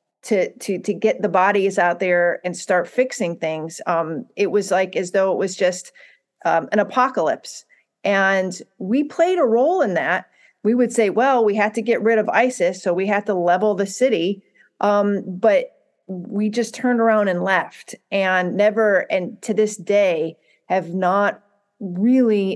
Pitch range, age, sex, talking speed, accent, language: 180-235 Hz, 40-59, female, 175 wpm, American, English